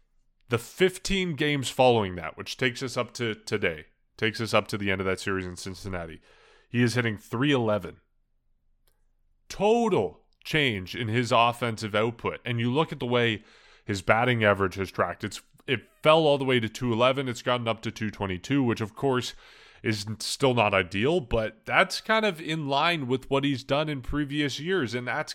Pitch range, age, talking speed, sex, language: 100-130 Hz, 20-39, 190 wpm, male, English